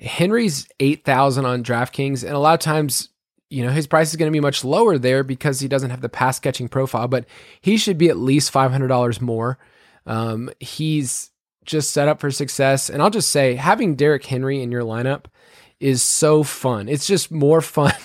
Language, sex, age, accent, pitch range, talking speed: English, male, 20-39, American, 125-150 Hz, 200 wpm